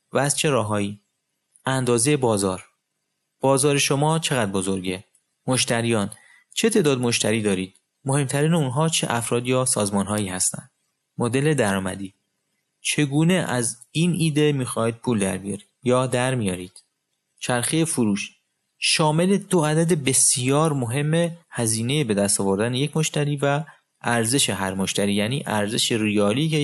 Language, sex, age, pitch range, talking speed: Persian, male, 30-49, 105-145 Hz, 120 wpm